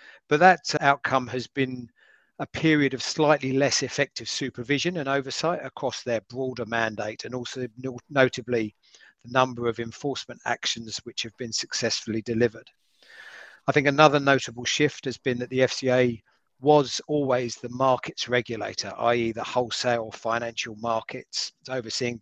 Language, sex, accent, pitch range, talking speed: English, male, British, 115-135 Hz, 145 wpm